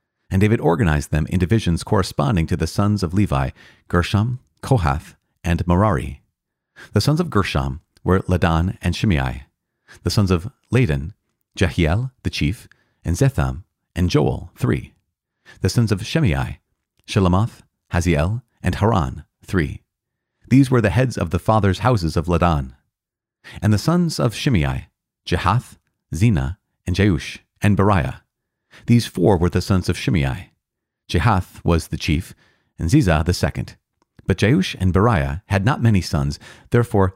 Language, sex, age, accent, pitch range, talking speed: English, male, 40-59, American, 85-110 Hz, 145 wpm